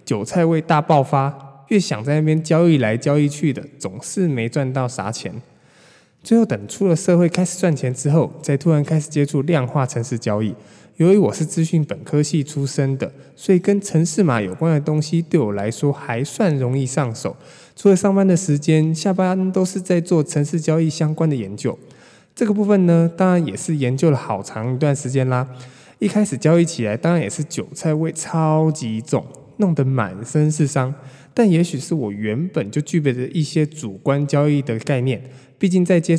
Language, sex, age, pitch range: Chinese, male, 20-39, 135-165 Hz